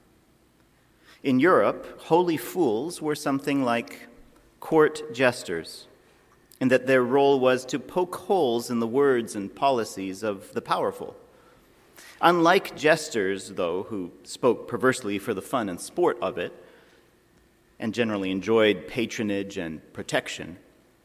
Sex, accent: male, American